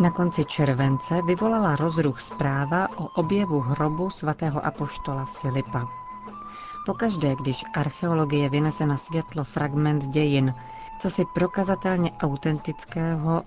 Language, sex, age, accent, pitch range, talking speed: Czech, female, 40-59, native, 140-170 Hz, 110 wpm